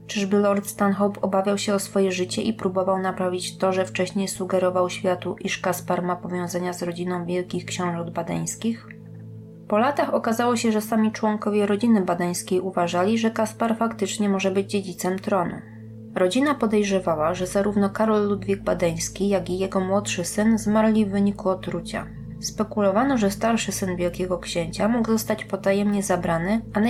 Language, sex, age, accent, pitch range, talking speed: Polish, female, 20-39, native, 180-215 Hz, 155 wpm